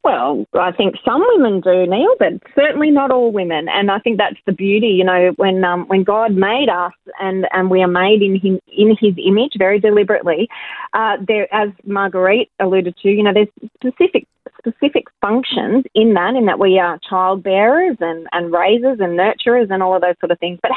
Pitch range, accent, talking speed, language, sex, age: 195-255 Hz, Australian, 200 wpm, English, female, 30-49